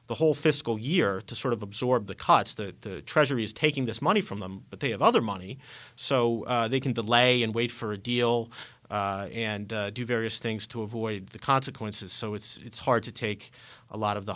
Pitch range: 105-125 Hz